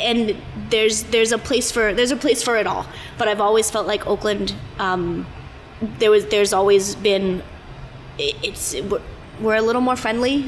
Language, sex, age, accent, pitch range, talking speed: English, female, 30-49, American, 185-220 Hz, 170 wpm